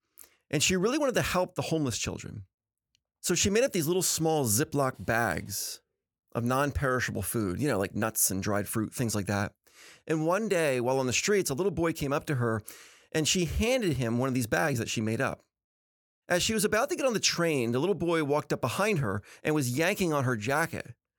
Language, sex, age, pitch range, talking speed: English, male, 30-49, 115-170 Hz, 225 wpm